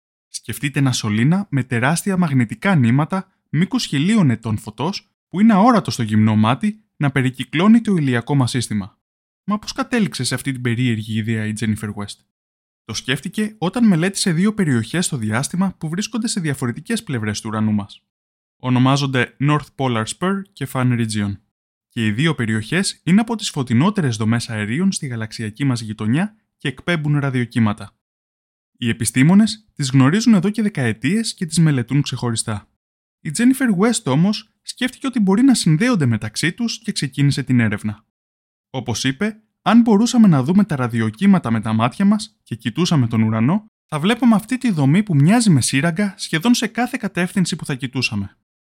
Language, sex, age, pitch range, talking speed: Greek, male, 20-39, 115-195 Hz, 165 wpm